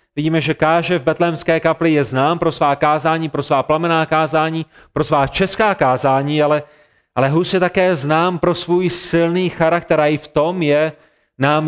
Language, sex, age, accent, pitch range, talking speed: Czech, male, 30-49, native, 145-170 Hz, 180 wpm